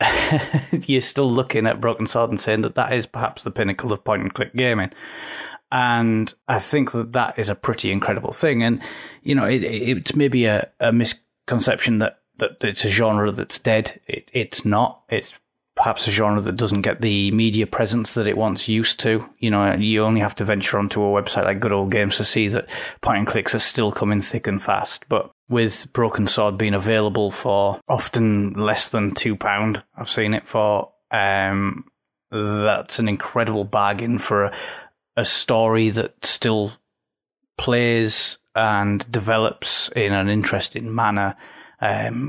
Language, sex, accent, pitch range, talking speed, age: English, male, British, 105-115 Hz, 170 wpm, 30-49